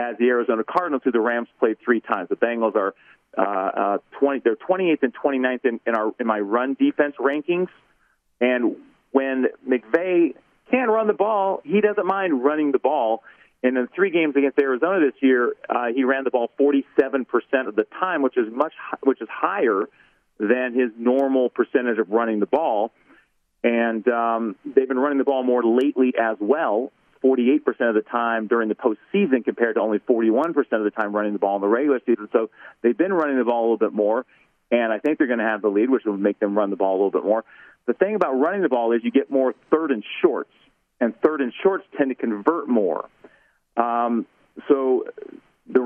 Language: English